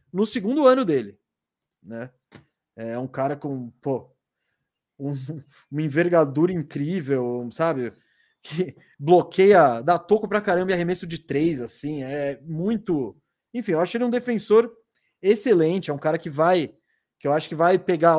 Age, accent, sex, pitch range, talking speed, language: 20-39, Brazilian, male, 150-205 Hz, 150 wpm, Portuguese